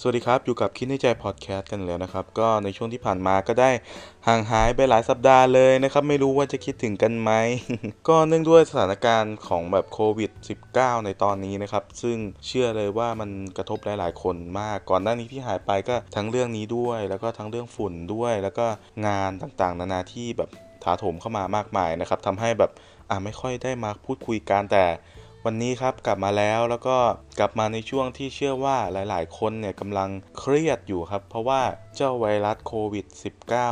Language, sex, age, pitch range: Thai, male, 20-39, 95-120 Hz